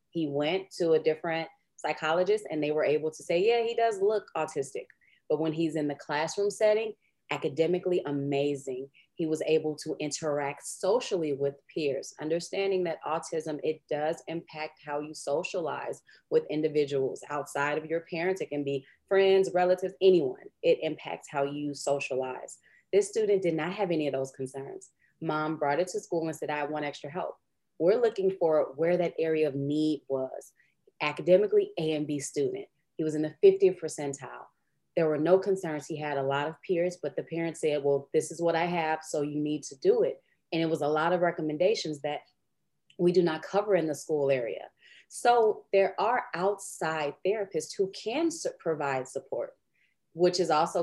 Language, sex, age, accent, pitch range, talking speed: English, female, 30-49, American, 150-190 Hz, 180 wpm